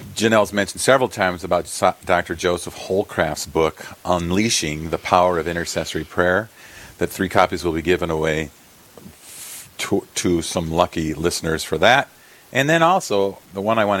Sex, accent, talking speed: male, American, 155 wpm